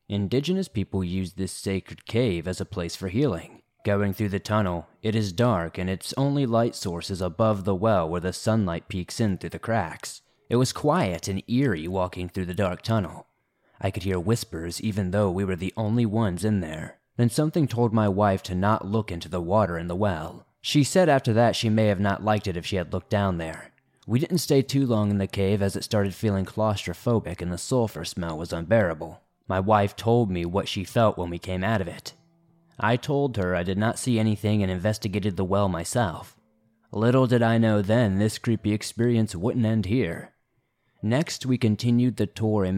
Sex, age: male, 20-39